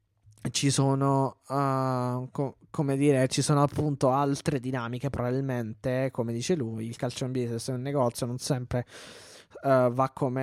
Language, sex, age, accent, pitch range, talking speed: Italian, male, 20-39, native, 125-155 Hz, 150 wpm